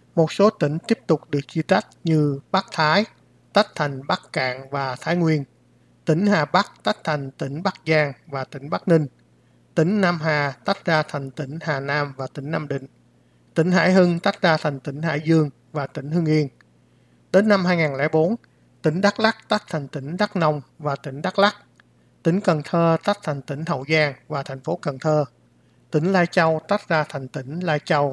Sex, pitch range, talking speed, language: male, 140-170 Hz, 200 wpm, Vietnamese